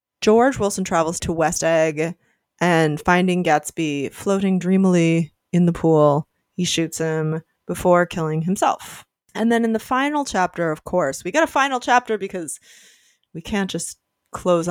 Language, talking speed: English, 155 wpm